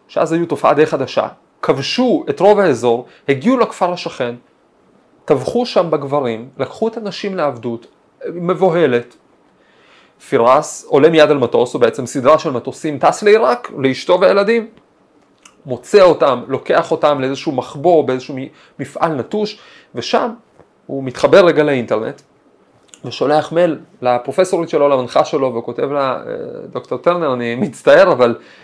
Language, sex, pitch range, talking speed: Hebrew, male, 135-205 Hz, 125 wpm